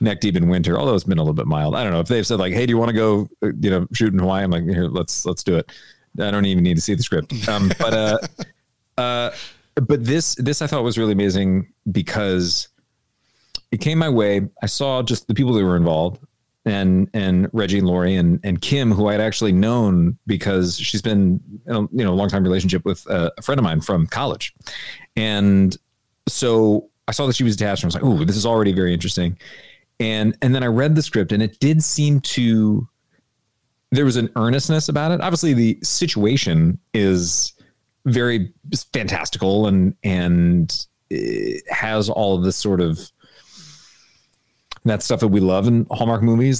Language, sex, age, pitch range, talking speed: English, male, 40-59, 95-125 Hz, 205 wpm